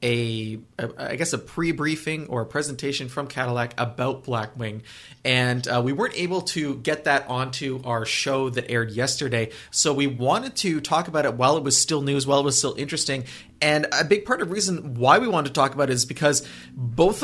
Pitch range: 125-160 Hz